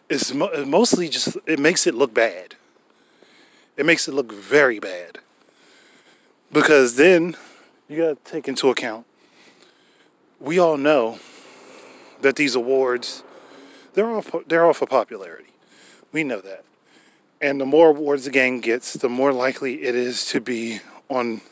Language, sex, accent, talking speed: English, male, American, 140 wpm